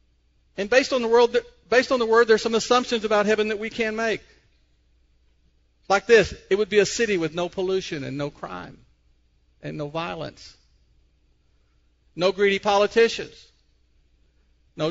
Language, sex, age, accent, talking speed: English, male, 50-69, American, 140 wpm